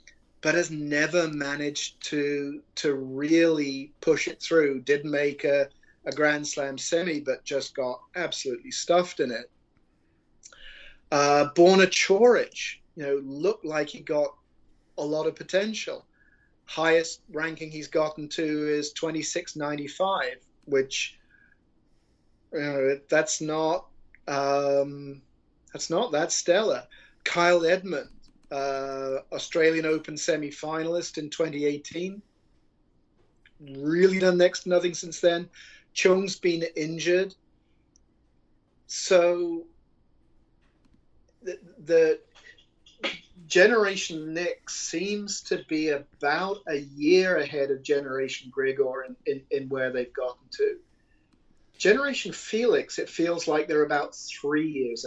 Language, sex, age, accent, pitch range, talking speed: English, male, 30-49, British, 140-175 Hz, 110 wpm